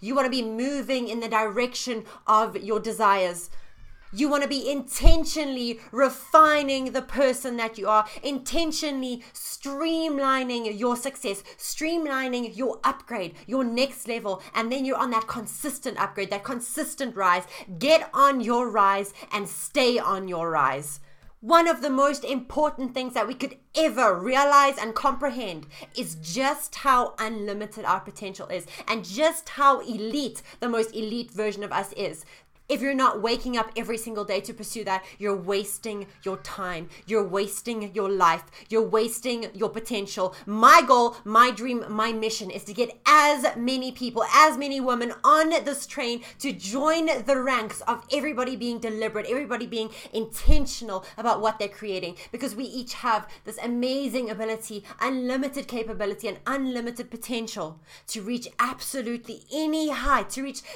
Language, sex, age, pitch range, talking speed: English, female, 20-39, 215-270 Hz, 155 wpm